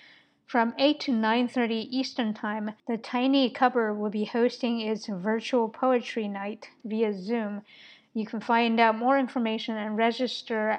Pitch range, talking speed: 220-250 Hz, 145 wpm